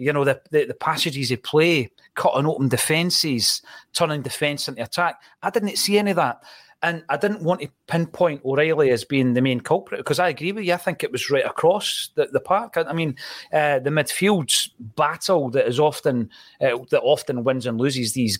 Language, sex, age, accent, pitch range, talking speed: English, male, 40-59, British, 130-165 Hz, 205 wpm